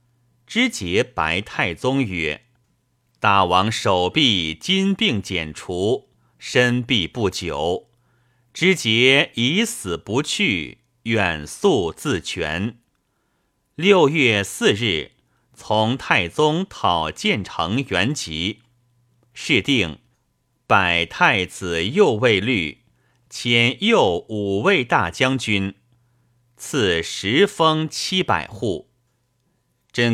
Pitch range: 100-125 Hz